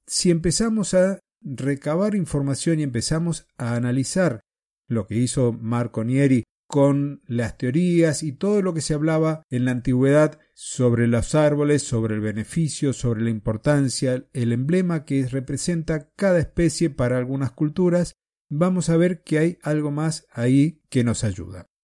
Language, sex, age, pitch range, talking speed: Spanish, male, 50-69, 125-170 Hz, 150 wpm